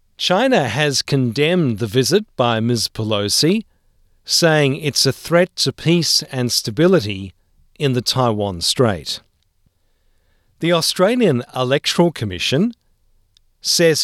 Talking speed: 105 wpm